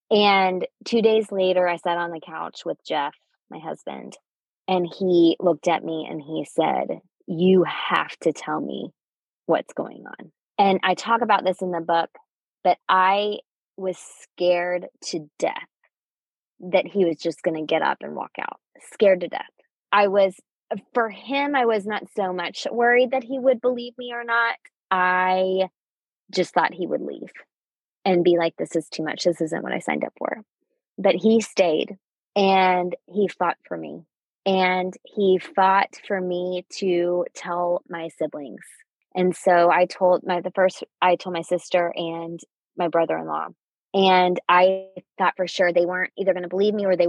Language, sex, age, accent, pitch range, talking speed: English, female, 20-39, American, 175-200 Hz, 175 wpm